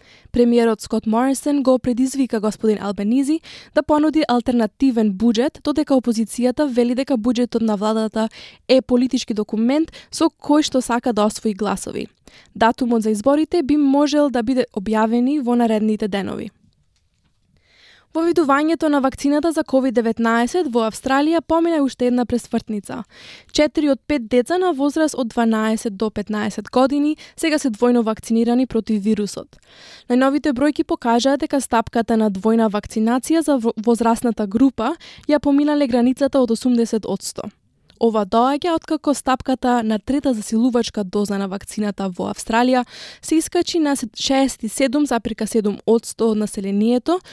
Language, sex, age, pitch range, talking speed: Bulgarian, female, 20-39, 225-285 Hz, 135 wpm